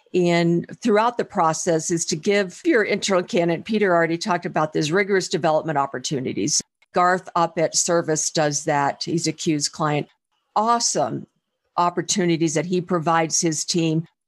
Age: 50-69